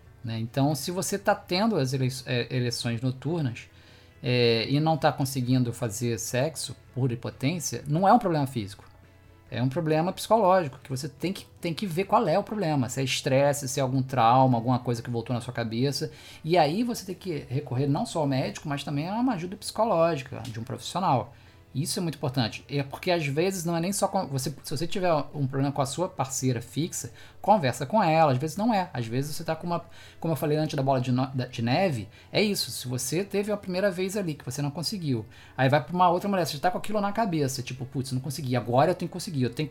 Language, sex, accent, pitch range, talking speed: Portuguese, male, Brazilian, 130-195 Hz, 230 wpm